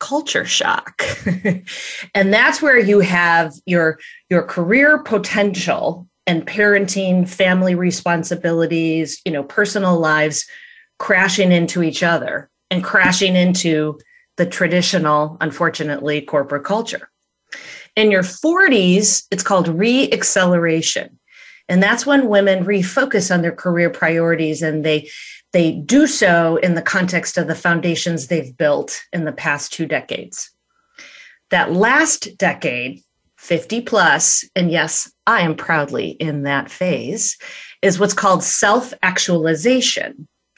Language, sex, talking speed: English, female, 120 wpm